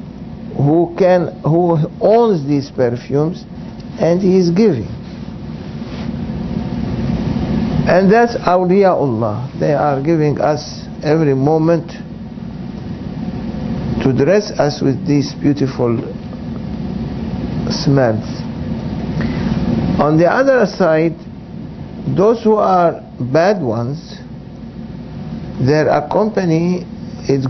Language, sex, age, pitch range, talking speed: English, male, 60-79, 135-195 Hz, 85 wpm